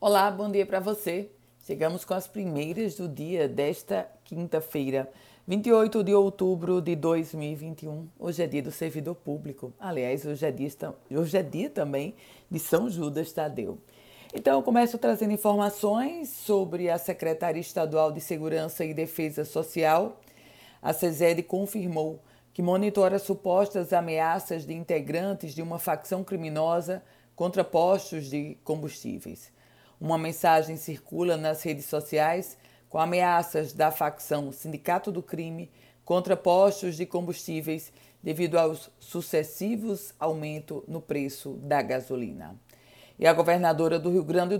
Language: Portuguese